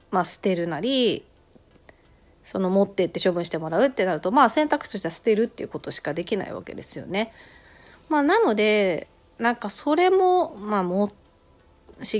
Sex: female